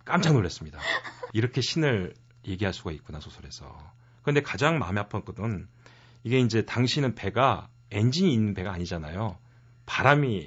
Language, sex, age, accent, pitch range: Korean, male, 40-59, native, 100-135 Hz